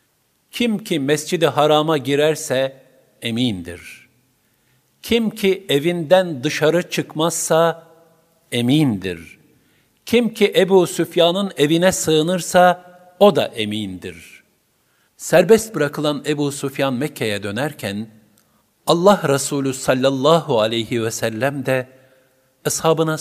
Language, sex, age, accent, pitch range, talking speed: Turkish, male, 50-69, native, 105-160 Hz, 90 wpm